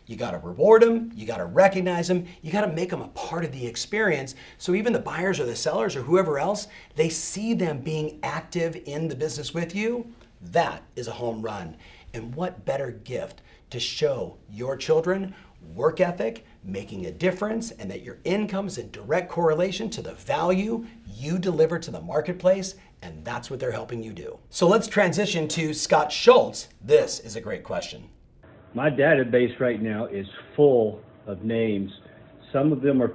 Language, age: English, 40-59